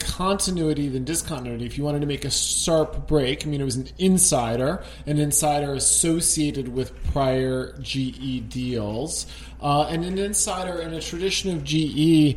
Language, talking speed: English, 160 wpm